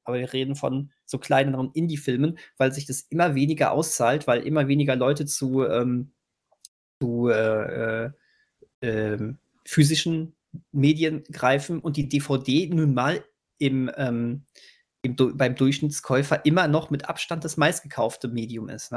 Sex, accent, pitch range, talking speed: male, German, 130-150 Hz, 140 wpm